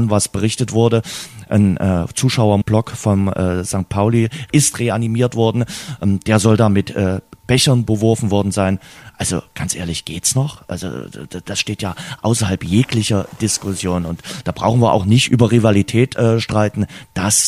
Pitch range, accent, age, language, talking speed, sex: 95-115 Hz, German, 30-49, German, 160 wpm, male